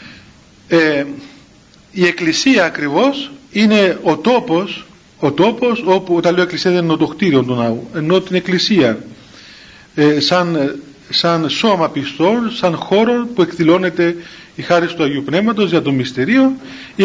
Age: 40-59